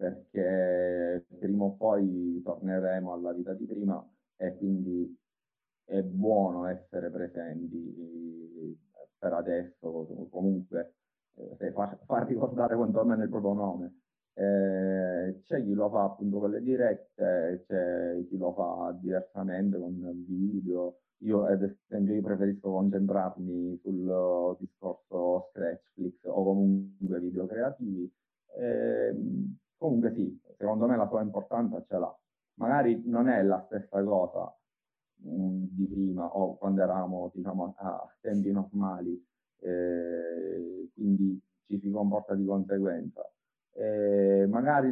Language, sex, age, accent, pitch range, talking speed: Italian, male, 30-49, native, 90-100 Hz, 120 wpm